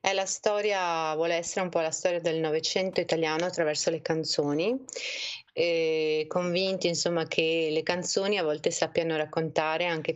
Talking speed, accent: 160 wpm, native